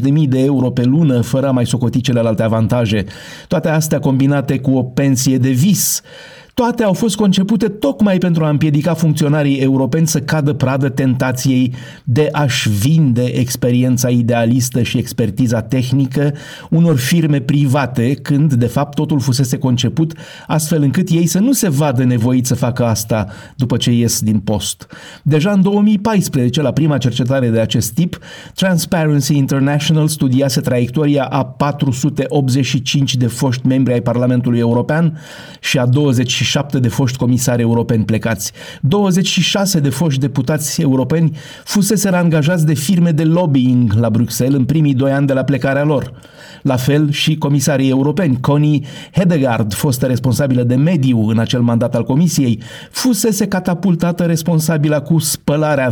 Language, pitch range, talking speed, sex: Romanian, 125-155 Hz, 150 wpm, male